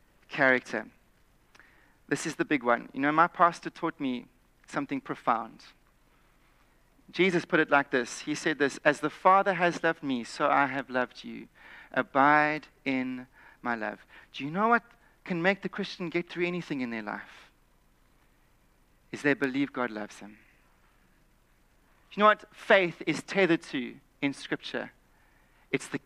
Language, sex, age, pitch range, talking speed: English, male, 40-59, 160-225 Hz, 160 wpm